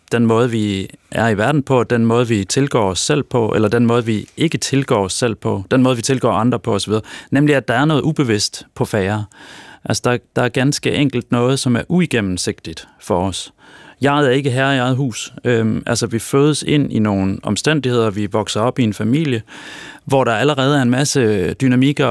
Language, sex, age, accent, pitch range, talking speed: Danish, male, 30-49, native, 105-135 Hz, 210 wpm